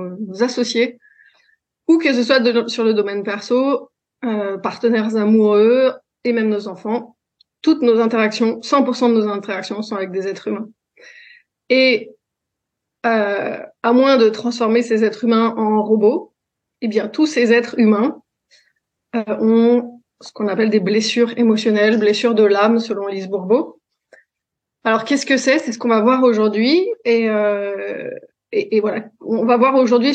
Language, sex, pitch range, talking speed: French, female, 215-250 Hz, 155 wpm